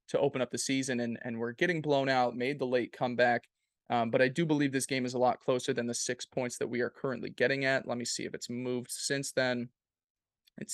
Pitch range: 120-140 Hz